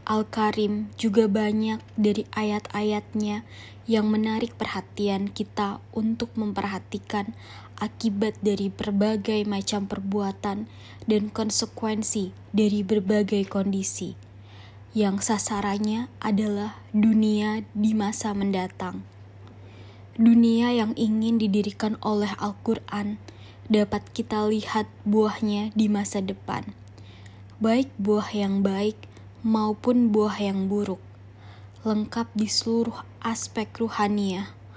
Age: 20-39